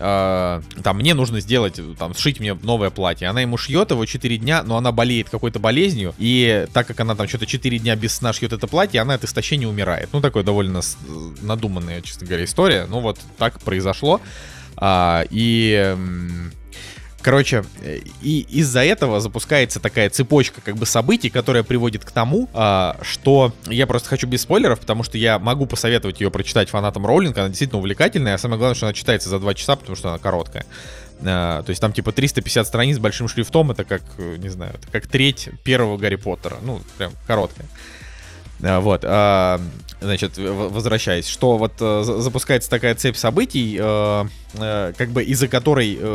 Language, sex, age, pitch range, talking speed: Russian, male, 20-39, 100-125 Hz, 170 wpm